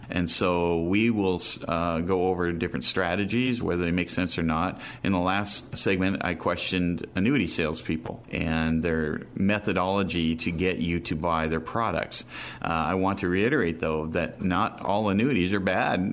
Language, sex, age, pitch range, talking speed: English, male, 40-59, 90-125 Hz, 165 wpm